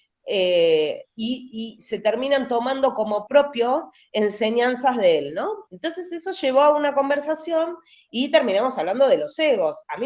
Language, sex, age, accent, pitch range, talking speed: Spanish, female, 20-39, Argentinian, 210-305 Hz, 155 wpm